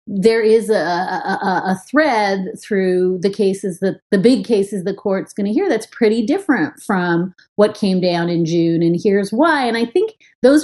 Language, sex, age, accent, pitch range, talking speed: English, female, 30-49, American, 190-250 Hz, 190 wpm